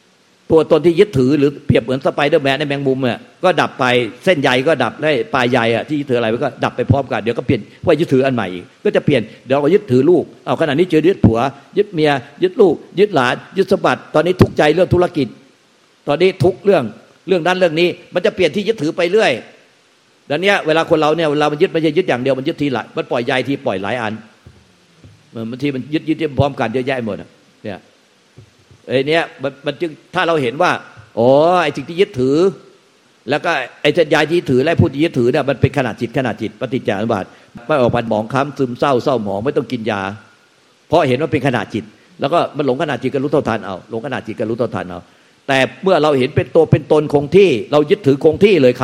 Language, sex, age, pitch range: Thai, male, 50-69, 120-160 Hz